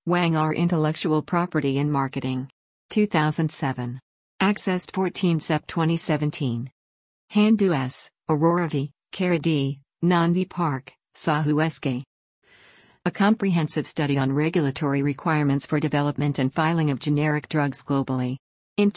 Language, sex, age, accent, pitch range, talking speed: English, female, 50-69, American, 140-175 Hz, 110 wpm